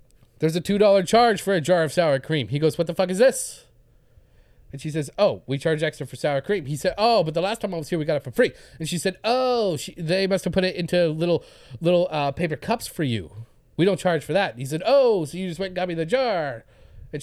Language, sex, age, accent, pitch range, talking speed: English, male, 30-49, American, 155-240 Hz, 275 wpm